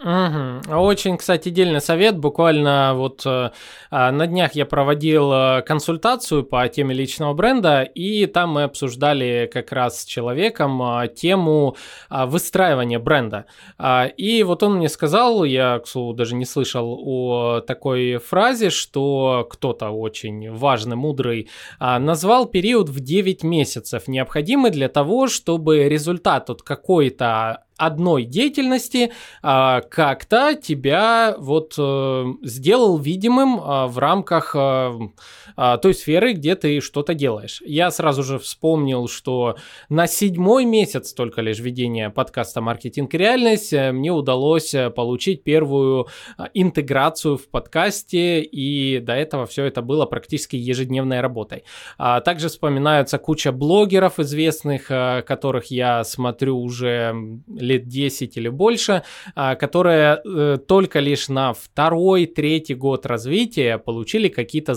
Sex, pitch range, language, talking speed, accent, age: male, 125-170 Hz, Russian, 115 wpm, native, 20-39